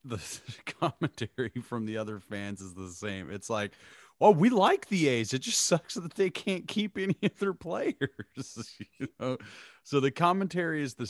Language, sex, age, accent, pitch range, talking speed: English, male, 30-49, American, 100-145 Hz, 185 wpm